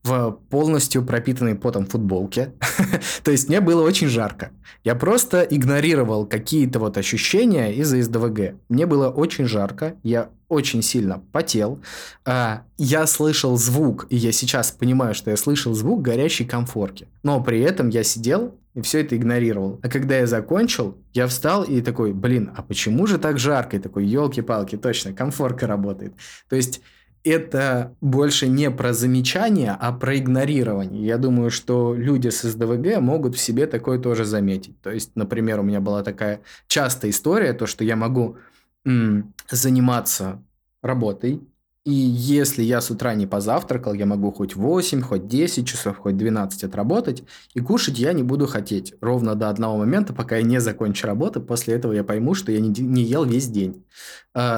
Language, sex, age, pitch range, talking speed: Russian, male, 20-39, 105-130 Hz, 165 wpm